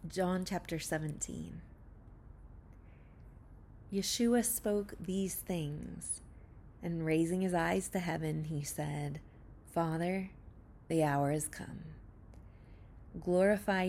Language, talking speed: English, 90 wpm